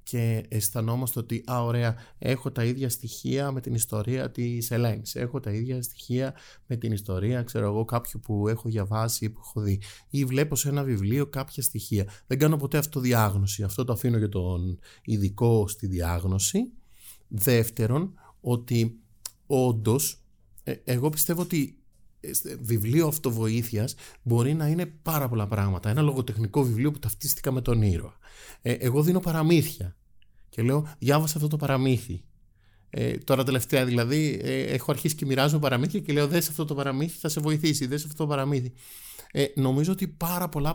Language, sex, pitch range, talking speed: Greek, male, 110-150 Hz, 160 wpm